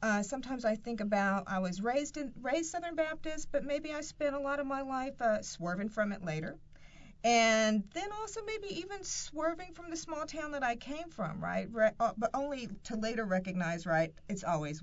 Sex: female